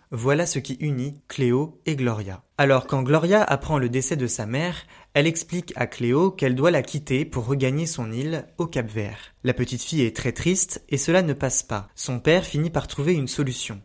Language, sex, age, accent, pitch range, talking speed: French, male, 20-39, French, 125-160 Hz, 210 wpm